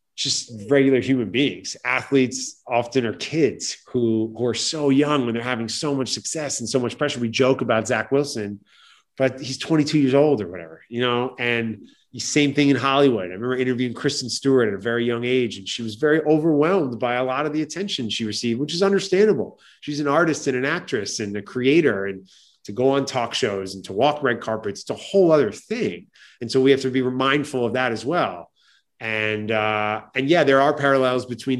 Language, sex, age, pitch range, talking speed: English, male, 30-49, 110-135 Hz, 215 wpm